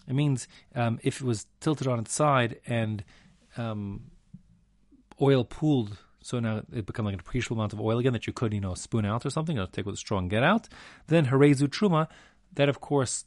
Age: 30-49